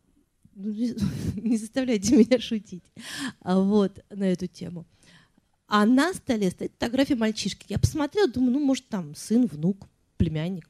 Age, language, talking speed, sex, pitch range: 30-49, Russian, 130 wpm, female, 190-245 Hz